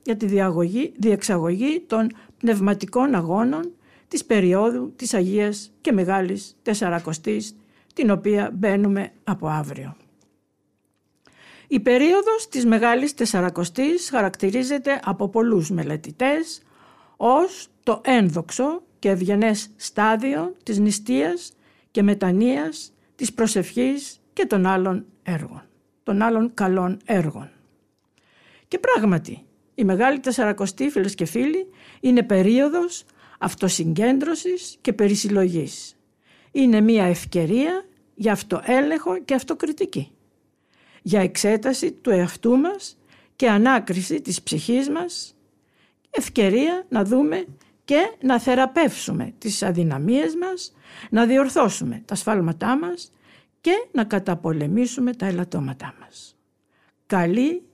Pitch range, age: 195-275 Hz, 60-79